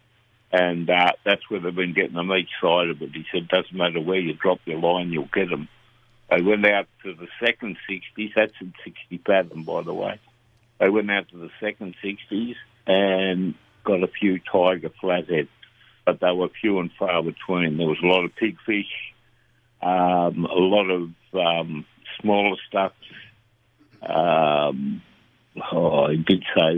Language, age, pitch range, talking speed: English, 60-79, 90-105 Hz, 170 wpm